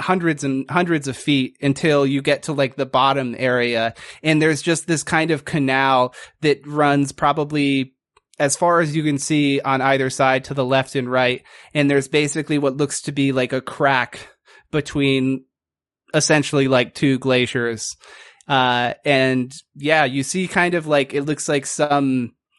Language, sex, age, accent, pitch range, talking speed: English, male, 30-49, American, 130-150 Hz, 170 wpm